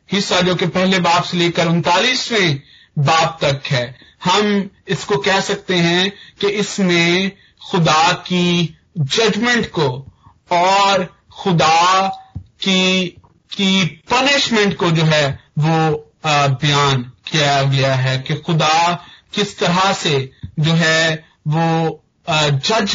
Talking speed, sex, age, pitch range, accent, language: 115 wpm, male, 40-59, 145-180 Hz, native, Hindi